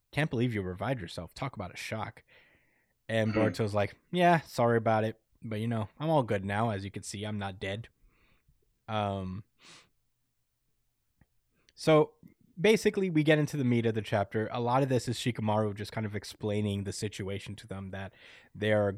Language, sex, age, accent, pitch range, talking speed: English, male, 20-39, American, 100-120 Hz, 185 wpm